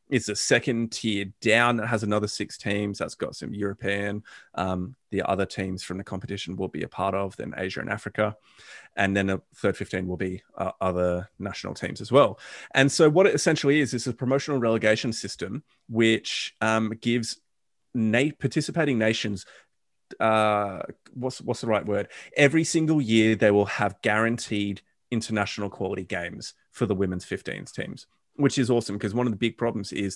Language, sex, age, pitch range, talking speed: English, male, 30-49, 100-120 Hz, 185 wpm